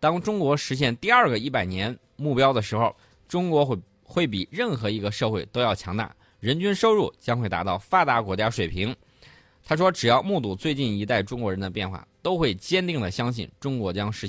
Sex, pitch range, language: male, 95-130 Hz, Chinese